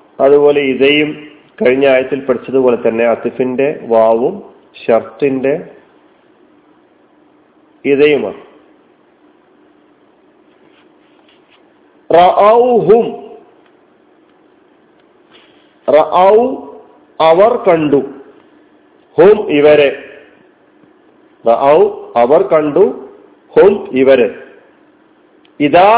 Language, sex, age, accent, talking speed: Malayalam, male, 40-59, native, 45 wpm